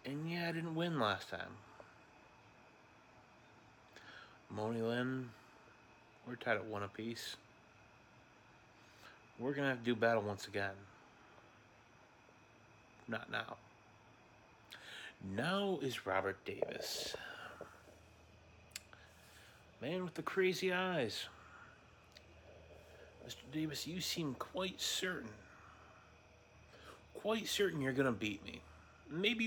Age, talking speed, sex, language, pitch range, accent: 30-49, 100 wpm, male, English, 100-135 Hz, American